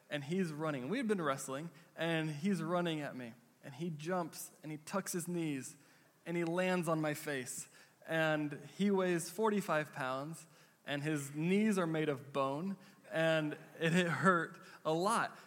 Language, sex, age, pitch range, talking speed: English, male, 20-39, 150-180 Hz, 165 wpm